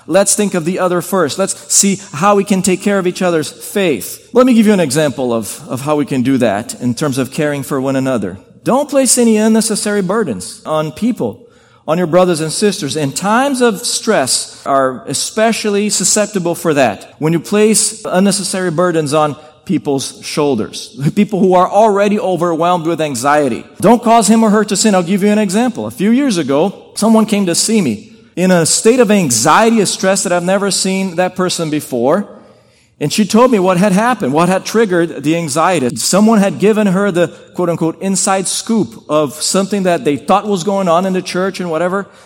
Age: 40-59